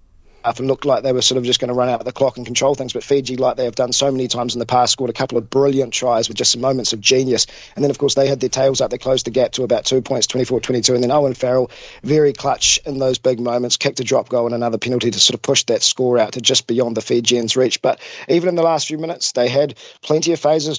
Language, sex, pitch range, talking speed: English, male, 115-135 Hz, 295 wpm